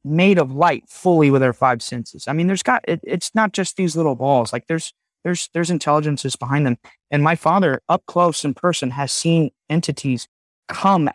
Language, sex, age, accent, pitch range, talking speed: English, male, 30-49, American, 125-165 Hz, 200 wpm